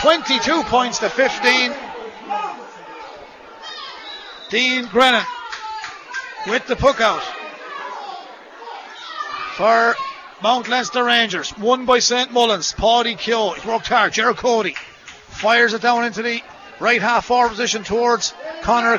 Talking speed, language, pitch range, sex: 115 wpm, English, 220-245 Hz, male